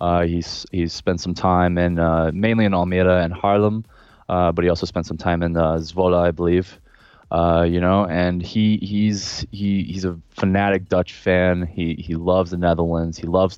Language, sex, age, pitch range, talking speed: Dutch, male, 20-39, 80-90 Hz, 195 wpm